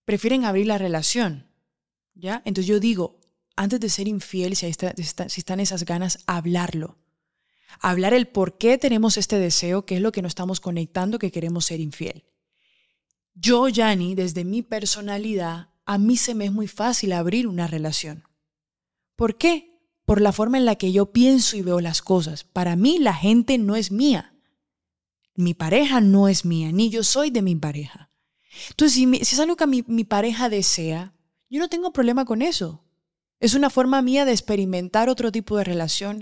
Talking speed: 185 wpm